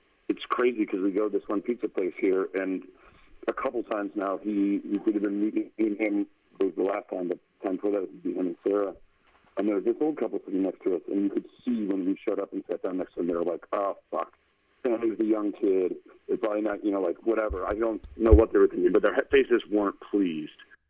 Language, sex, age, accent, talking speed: English, male, 40-59, American, 265 wpm